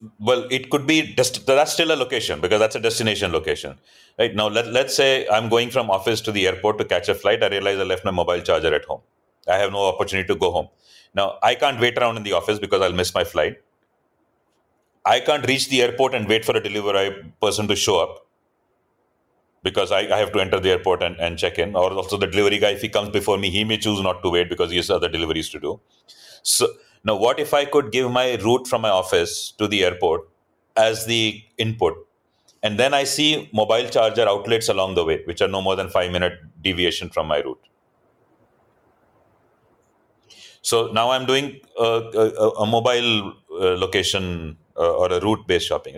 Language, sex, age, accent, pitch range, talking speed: English, male, 30-49, Indian, 105-145 Hz, 210 wpm